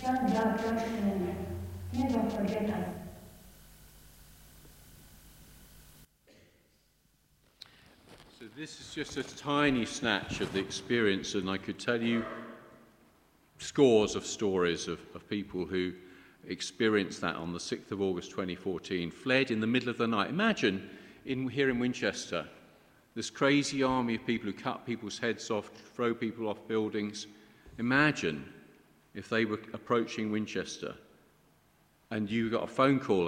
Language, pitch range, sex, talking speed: English, 95-130 Hz, male, 125 wpm